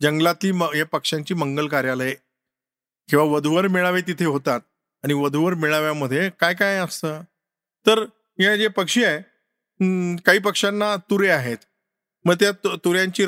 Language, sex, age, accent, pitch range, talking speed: Marathi, male, 50-69, native, 140-185 Hz, 135 wpm